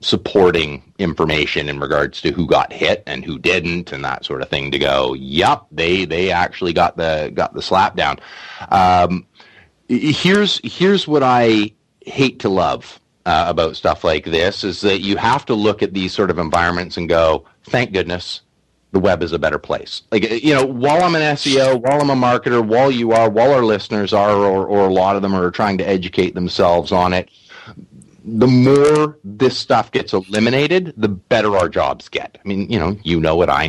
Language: English